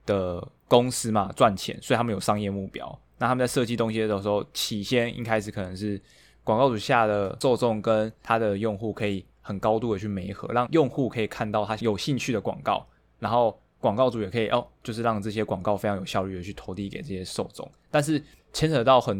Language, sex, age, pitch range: Chinese, male, 20-39, 100-120 Hz